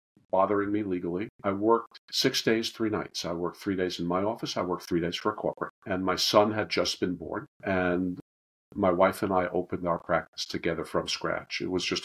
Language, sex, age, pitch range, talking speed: English, male, 50-69, 90-105 Hz, 220 wpm